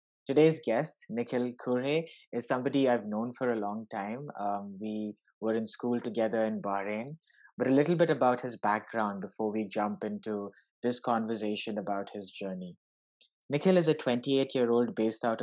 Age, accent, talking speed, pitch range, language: 30-49, Indian, 165 wpm, 110-130 Hz, English